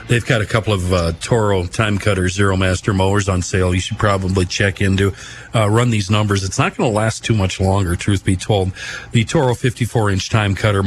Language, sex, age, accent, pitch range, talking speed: English, male, 40-59, American, 95-115 Hz, 220 wpm